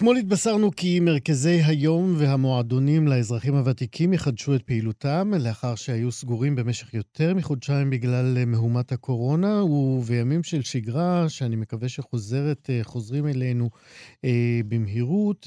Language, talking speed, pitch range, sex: Hebrew, 115 wpm, 125-155 Hz, male